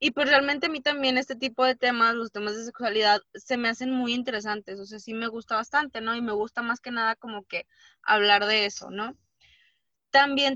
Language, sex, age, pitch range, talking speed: Spanish, female, 20-39, 205-260 Hz, 220 wpm